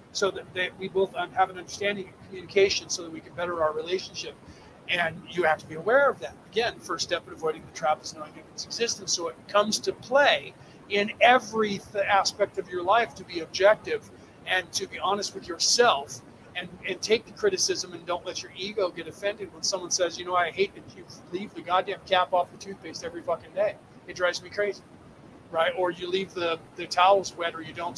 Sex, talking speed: male, 225 wpm